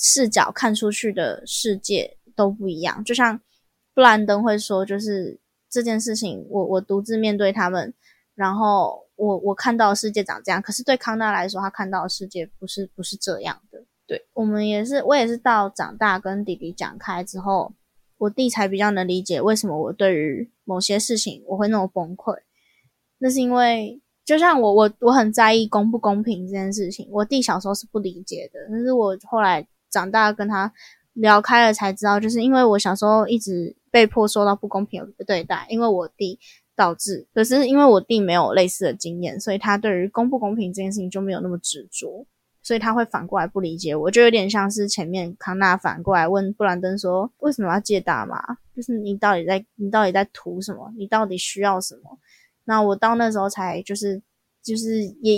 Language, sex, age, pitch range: Chinese, female, 20-39, 190-225 Hz